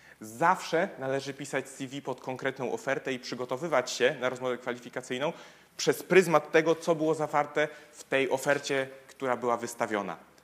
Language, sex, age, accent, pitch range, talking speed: Polish, male, 30-49, native, 125-155 Hz, 145 wpm